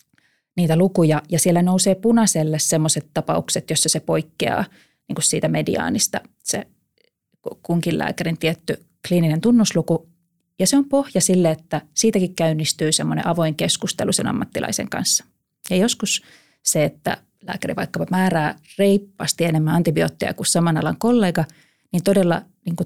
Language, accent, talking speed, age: Finnish, native, 135 wpm, 30-49